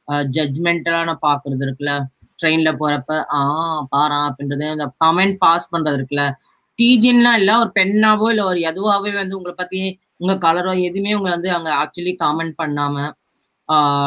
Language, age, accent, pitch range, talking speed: Tamil, 20-39, native, 145-185 Hz, 135 wpm